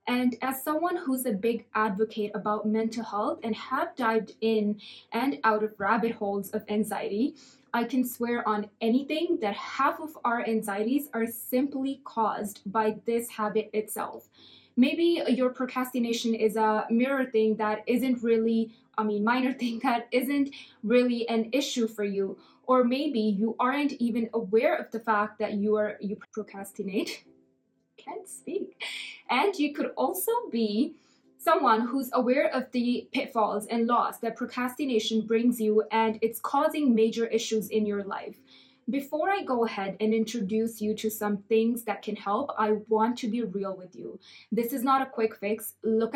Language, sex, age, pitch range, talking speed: English, female, 20-39, 215-250 Hz, 165 wpm